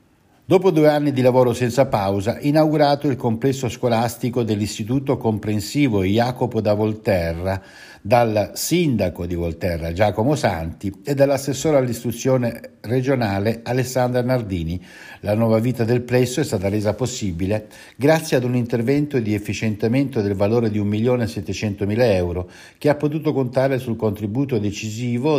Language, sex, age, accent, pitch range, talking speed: Italian, male, 60-79, native, 100-125 Hz, 130 wpm